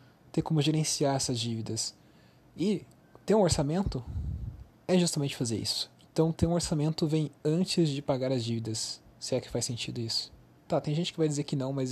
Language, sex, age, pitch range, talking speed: Portuguese, male, 20-39, 115-150 Hz, 190 wpm